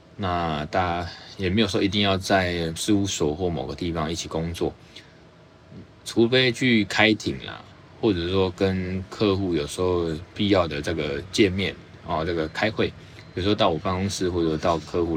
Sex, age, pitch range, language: male, 20-39, 85-105 Hz, Chinese